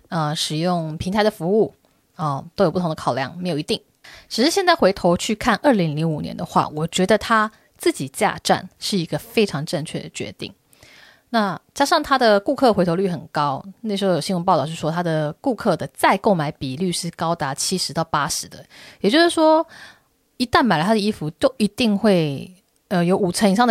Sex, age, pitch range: female, 20-39, 175-250 Hz